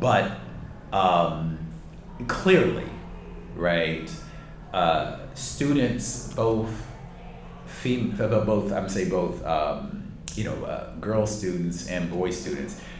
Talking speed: 100 wpm